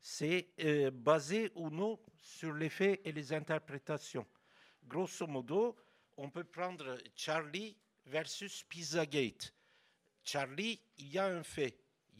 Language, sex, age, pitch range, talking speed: French, male, 60-79, 120-160 Hz, 130 wpm